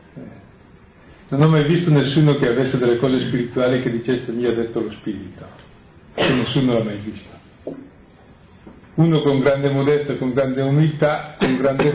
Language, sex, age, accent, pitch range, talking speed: Italian, male, 50-69, native, 115-140 Hz, 155 wpm